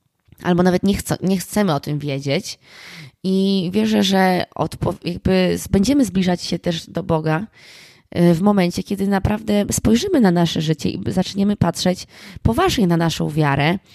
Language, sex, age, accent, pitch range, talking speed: Polish, female, 20-39, native, 160-195 Hz, 140 wpm